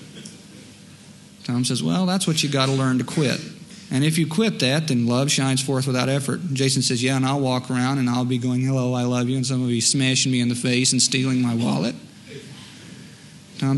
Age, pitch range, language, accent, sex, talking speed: 40-59, 130-160 Hz, English, American, male, 220 wpm